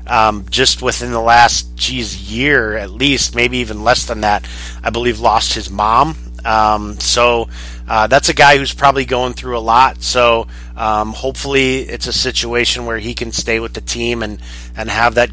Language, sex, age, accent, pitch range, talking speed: English, male, 30-49, American, 100-130 Hz, 190 wpm